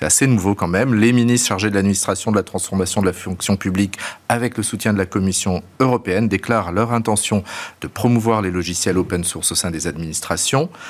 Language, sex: French, male